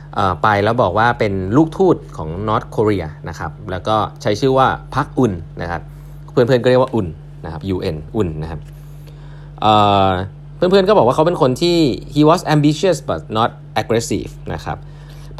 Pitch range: 105-145 Hz